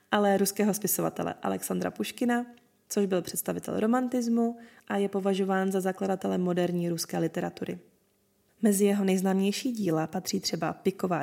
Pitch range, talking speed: 180-220 Hz, 130 wpm